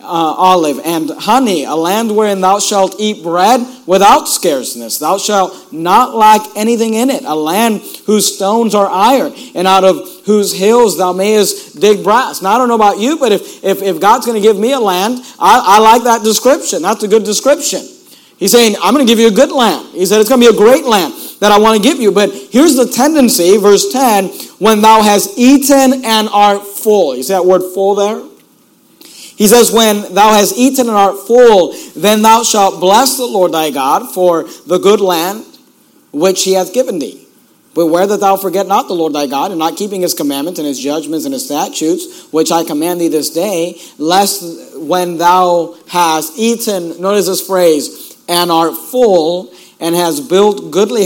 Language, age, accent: English, 50-69, American